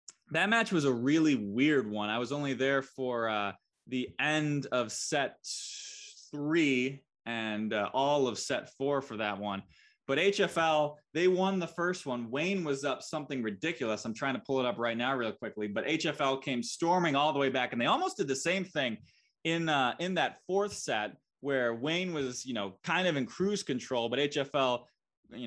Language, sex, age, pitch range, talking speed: English, male, 20-39, 115-155 Hz, 195 wpm